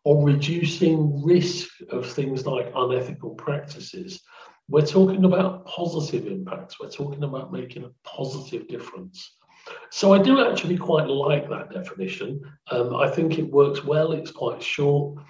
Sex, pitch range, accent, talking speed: male, 145-185 Hz, British, 145 wpm